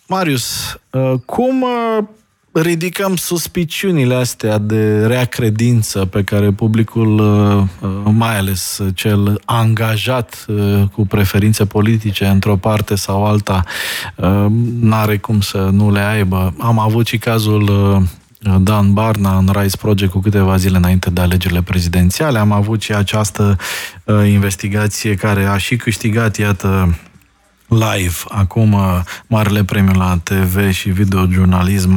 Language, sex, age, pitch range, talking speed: Romanian, male, 20-39, 95-115 Hz, 115 wpm